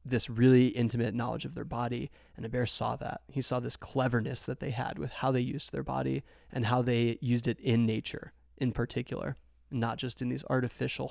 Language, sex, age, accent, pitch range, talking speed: English, male, 20-39, American, 115-125 Hz, 210 wpm